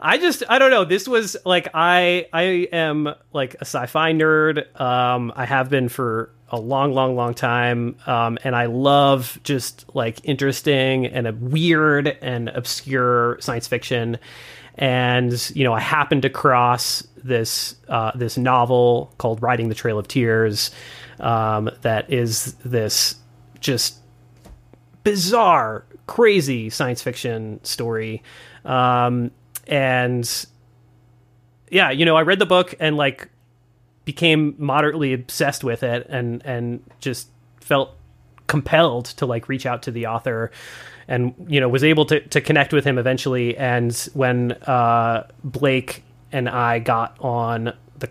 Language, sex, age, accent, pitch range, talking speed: English, male, 30-49, American, 120-150 Hz, 140 wpm